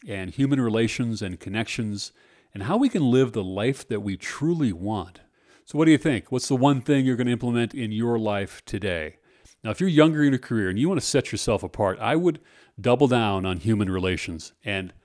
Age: 40-59